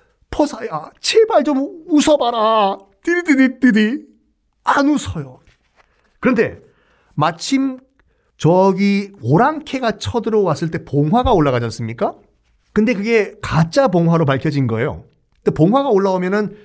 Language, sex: Korean, male